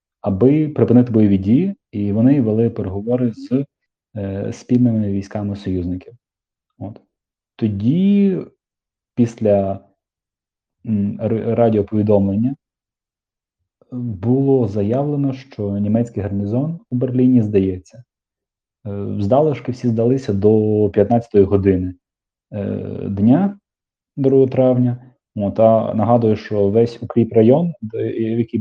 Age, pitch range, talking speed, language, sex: 30-49, 100-120 Hz, 90 wpm, Ukrainian, male